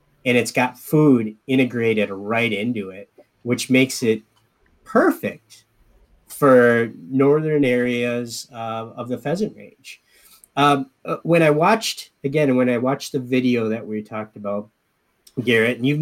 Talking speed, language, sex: 140 wpm, English, male